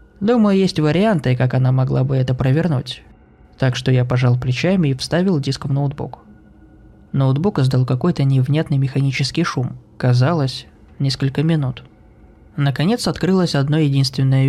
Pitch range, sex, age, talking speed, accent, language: 130-160 Hz, male, 20-39, 135 wpm, native, Russian